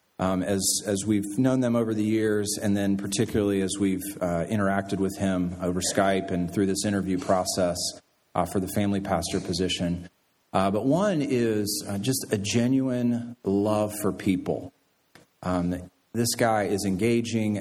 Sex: male